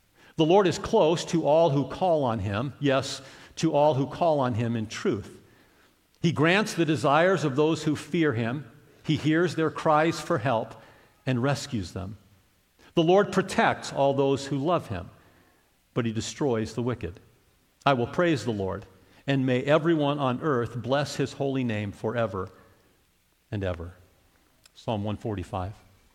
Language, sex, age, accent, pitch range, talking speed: English, male, 50-69, American, 110-160 Hz, 160 wpm